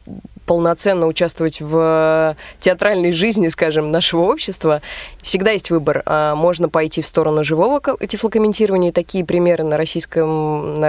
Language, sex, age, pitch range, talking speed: Russian, female, 20-39, 160-195 Hz, 115 wpm